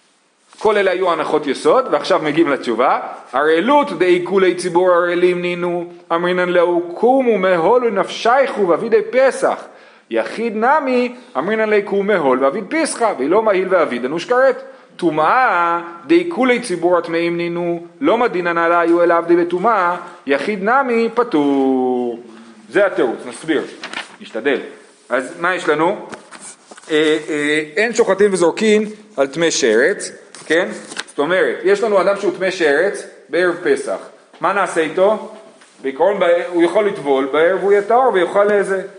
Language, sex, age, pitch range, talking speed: Hebrew, male, 40-59, 170-235 Hz, 115 wpm